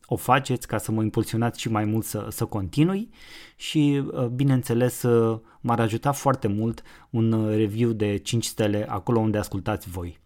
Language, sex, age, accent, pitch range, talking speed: Romanian, male, 20-39, native, 105-125 Hz, 160 wpm